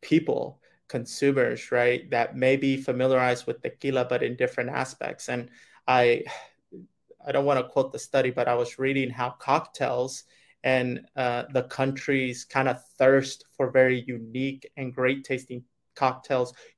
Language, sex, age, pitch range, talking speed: English, male, 30-49, 130-145 Hz, 150 wpm